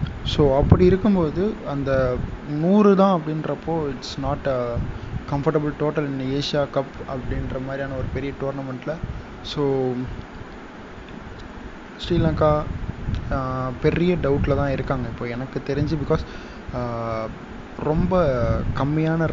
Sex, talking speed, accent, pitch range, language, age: male, 100 wpm, native, 125-160 Hz, Tamil, 20-39